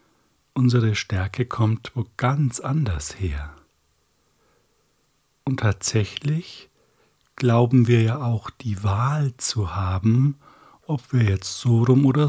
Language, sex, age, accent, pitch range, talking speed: German, male, 60-79, German, 95-130 Hz, 110 wpm